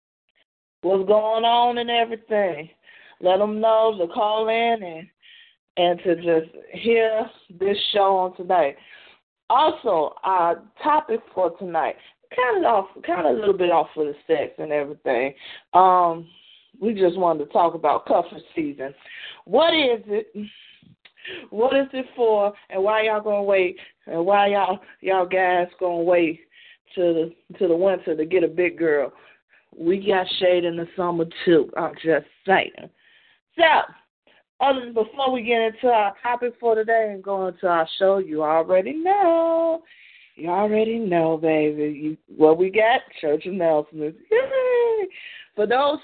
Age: 20-39